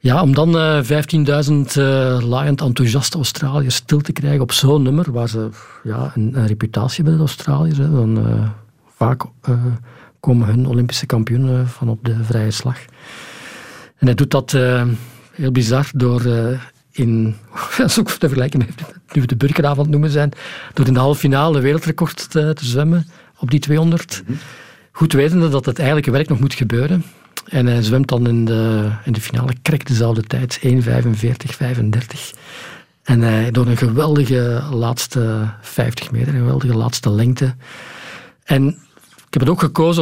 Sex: male